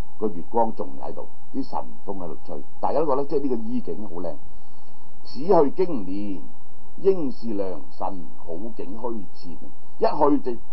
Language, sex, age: Chinese, male, 60-79